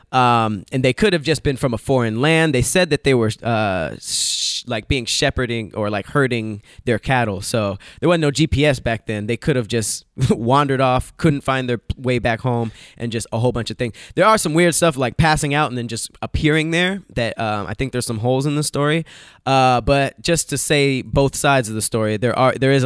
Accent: American